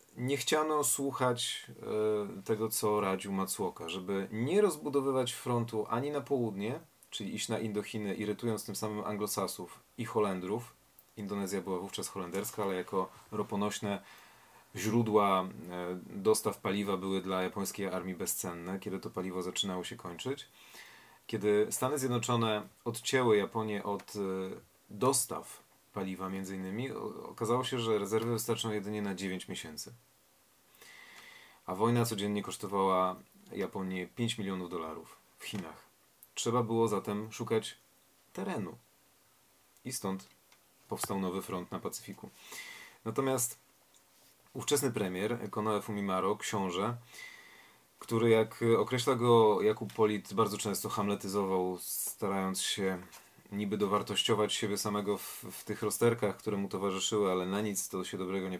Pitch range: 95-115 Hz